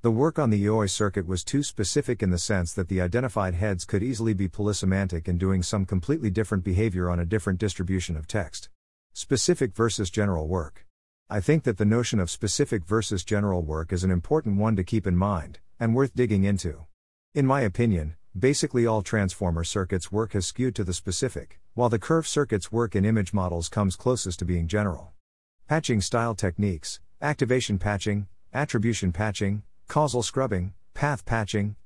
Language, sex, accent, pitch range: English, male, American, 90-120 Hz